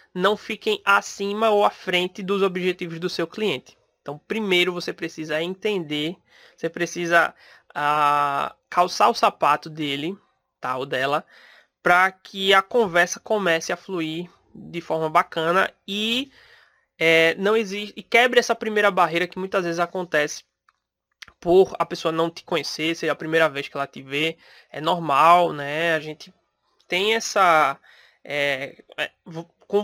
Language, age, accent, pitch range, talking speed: Portuguese, 20-39, Brazilian, 160-195 Hz, 145 wpm